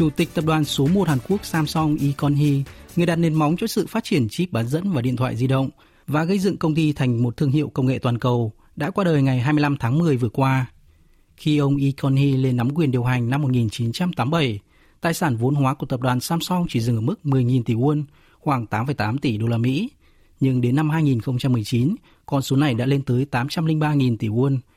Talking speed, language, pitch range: 225 wpm, Vietnamese, 125-155 Hz